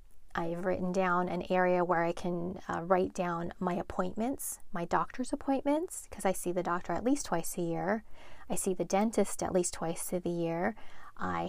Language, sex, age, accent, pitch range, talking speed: English, female, 30-49, American, 170-200 Hz, 190 wpm